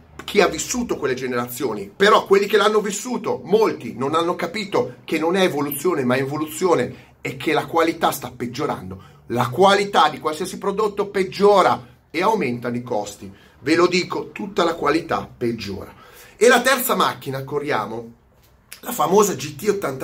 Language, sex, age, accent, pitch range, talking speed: Italian, male, 30-49, native, 120-175 Hz, 155 wpm